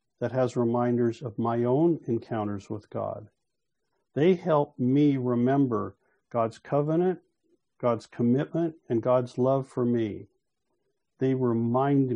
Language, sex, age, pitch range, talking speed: English, male, 50-69, 115-155 Hz, 120 wpm